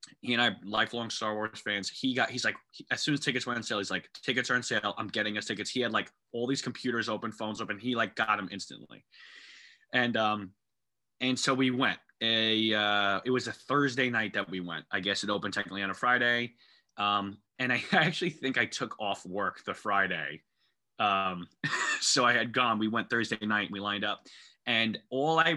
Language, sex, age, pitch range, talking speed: English, male, 20-39, 100-125 Hz, 225 wpm